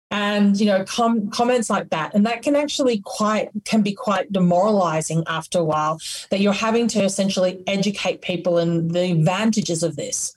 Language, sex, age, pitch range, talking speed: English, female, 30-49, 185-235 Hz, 180 wpm